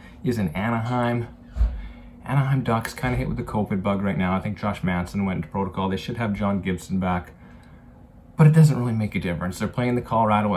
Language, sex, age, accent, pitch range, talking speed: English, male, 30-49, American, 90-105 Hz, 215 wpm